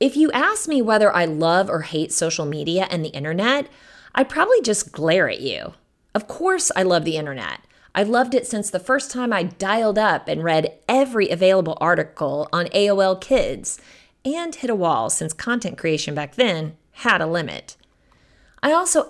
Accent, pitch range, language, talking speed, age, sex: American, 165-250 Hz, English, 180 wpm, 30-49, female